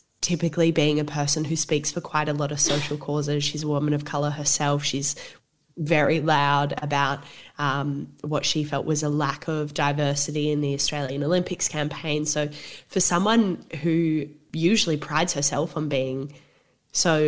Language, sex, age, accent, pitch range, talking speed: English, female, 10-29, Australian, 145-160 Hz, 165 wpm